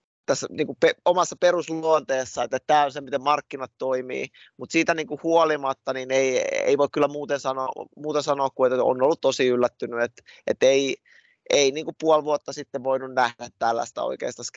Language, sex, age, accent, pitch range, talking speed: Finnish, male, 20-39, native, 125-150 Hz, 185 wpm